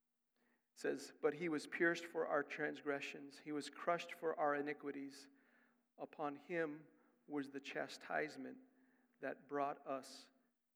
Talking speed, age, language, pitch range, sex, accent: 125 wpm, 50-69, English, 145-240 Hz, male, American